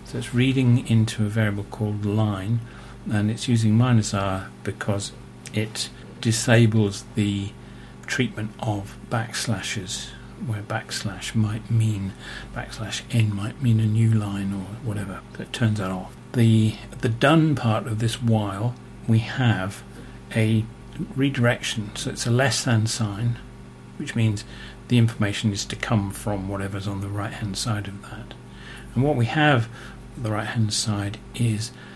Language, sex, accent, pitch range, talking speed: English, male, British, 100-115 Hz, 145 wpm